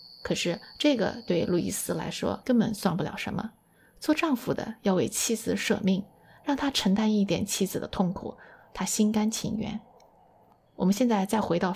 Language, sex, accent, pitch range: Chinese, female, native, 195-245 Hz